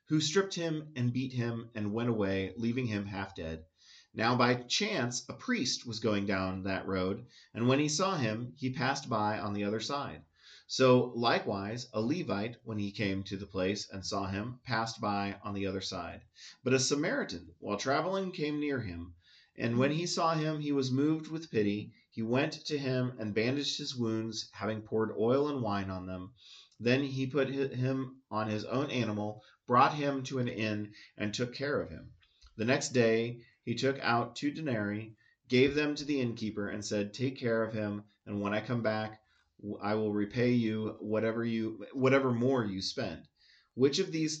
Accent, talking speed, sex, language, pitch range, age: American, 190 wpm, male, English, 105-130 Hz, 30-49